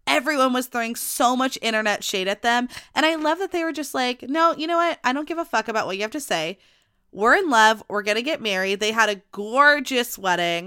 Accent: American